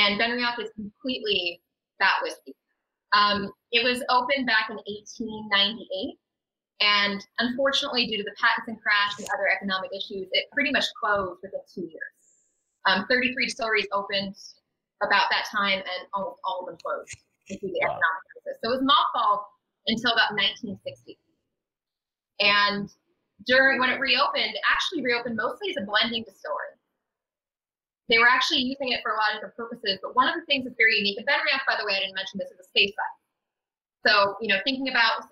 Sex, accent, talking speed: female, American, 180 wpm